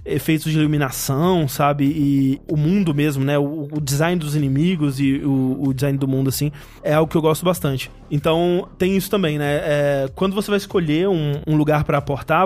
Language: Portuguese